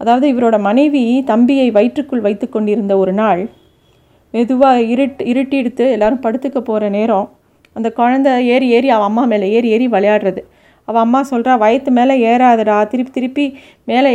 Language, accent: Tamil, native